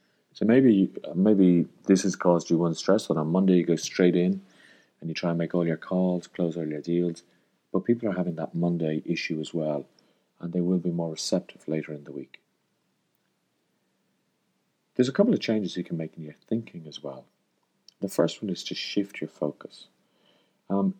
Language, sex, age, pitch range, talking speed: English, male, 40-59, 85-100 Hz, 195 wpm